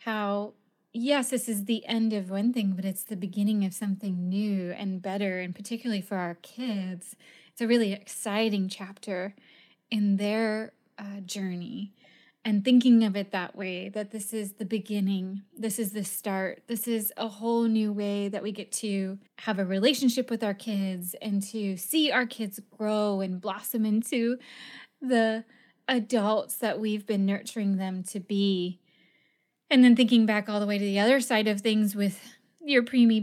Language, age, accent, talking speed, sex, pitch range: English, 20-39, American, 175 wpm, female, 200-235 Hz